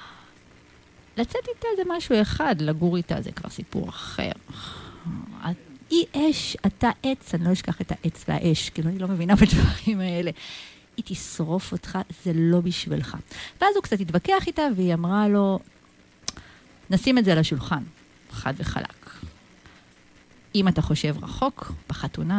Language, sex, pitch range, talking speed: Hebrew, female, 165-225 Hz, 145 wpm